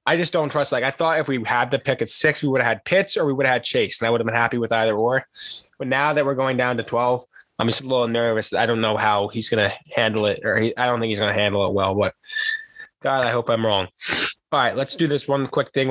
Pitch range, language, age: 115-150 Hz, English, 20-39